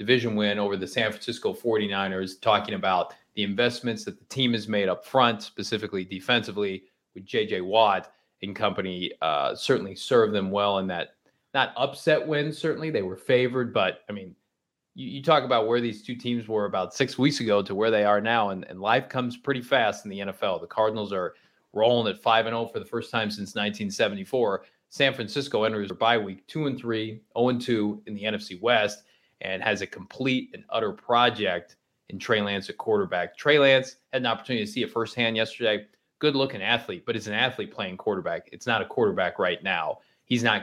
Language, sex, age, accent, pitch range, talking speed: English, male, 30-49, American, 100-130 Hz, 200 wpm